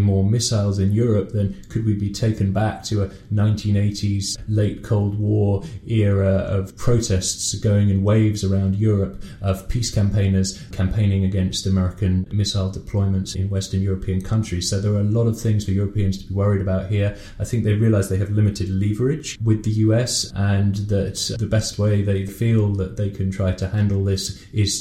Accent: British